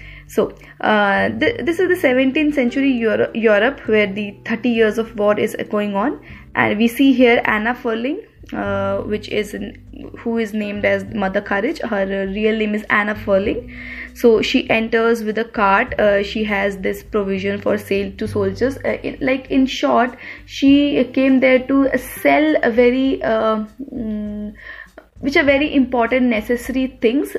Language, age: English, 20-39